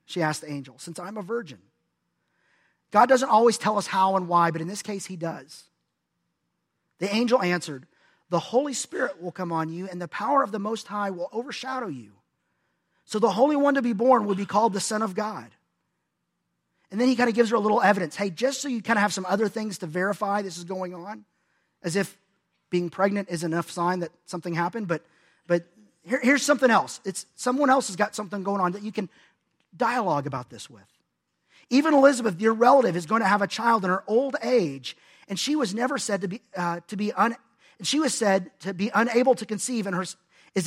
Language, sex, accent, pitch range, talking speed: English, male, American, 180-240 Hz, 220 wpm